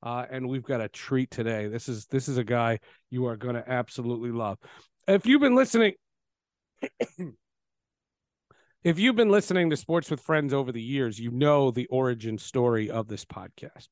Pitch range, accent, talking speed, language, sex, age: 125-165 Hz, American, 180 wpm, English, male, 40-59